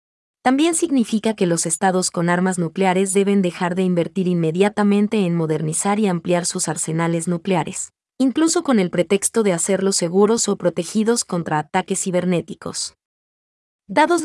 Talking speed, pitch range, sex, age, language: 140 wpm, 175-215 Hz, female, 20-39, Vietnamese